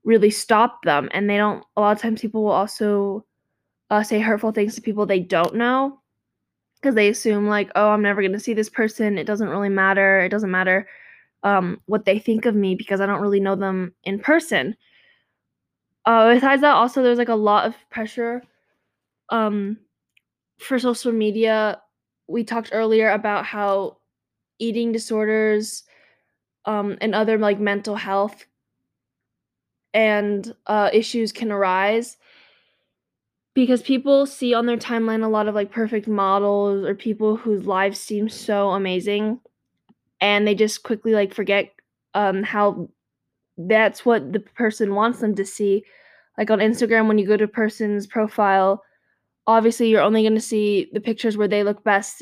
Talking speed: 165 wpm